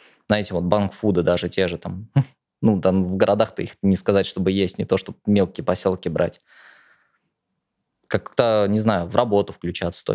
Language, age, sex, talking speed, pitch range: Russian, 20-39, male, 175 wpm, 90-110 Hz